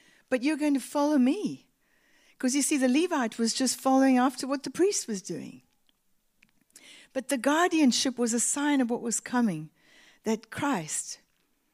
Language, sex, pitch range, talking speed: English, female, 180-255 Hz, 165 wpm